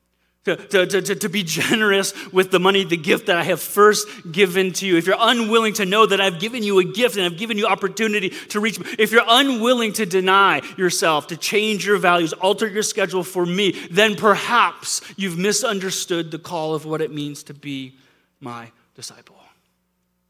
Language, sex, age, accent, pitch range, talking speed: English, male, 30-49, American, 165-220 Hz, 195 wpm